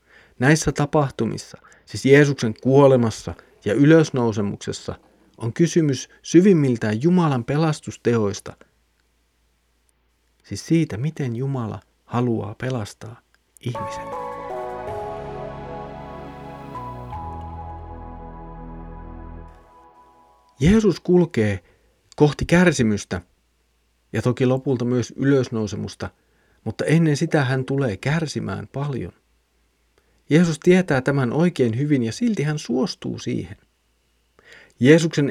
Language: Finnish